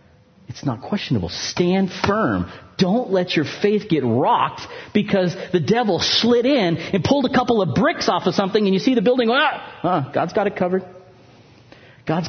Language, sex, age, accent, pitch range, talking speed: English, male, 40-59, American, 120-170 Hz, 175 wpm